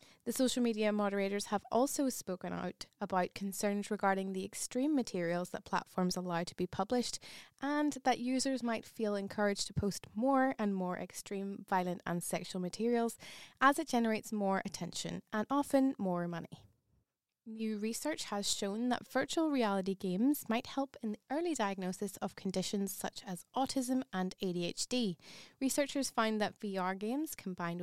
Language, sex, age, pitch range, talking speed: English, female, 20-39, 185-240 Hz, 155 wpm